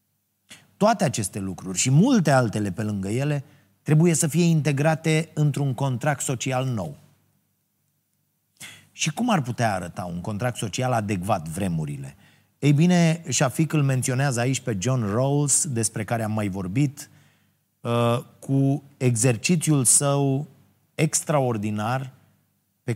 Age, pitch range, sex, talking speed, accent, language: 30-49, 115-155 Hz, male, 120 wpm, native, Romanian